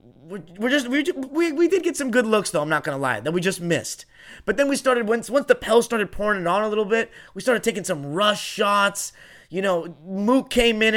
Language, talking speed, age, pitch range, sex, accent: English, 245 wpm, 30-49, 170-210 Hz, male, American